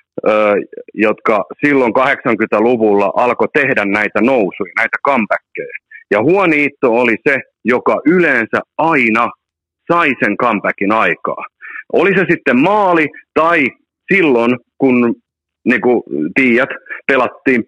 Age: 40-59